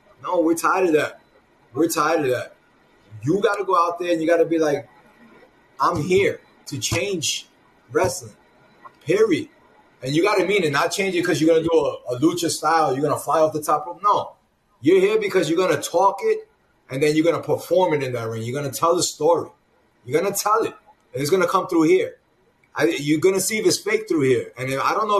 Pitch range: 150-205 Hz